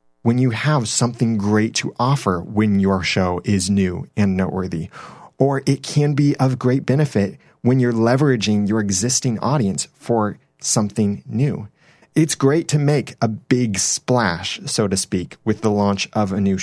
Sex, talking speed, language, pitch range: male, 165 wpm, English, 105-140 Hz